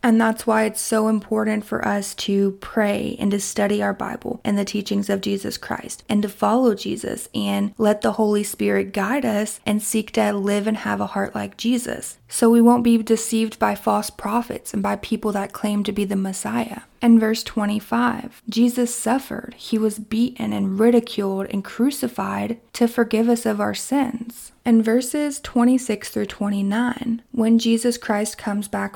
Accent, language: American, English